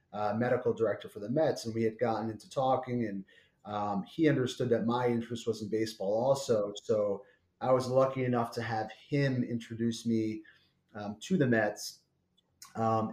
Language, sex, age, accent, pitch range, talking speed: English, male, 30-49, American, 110-130 Hz, 175 wpm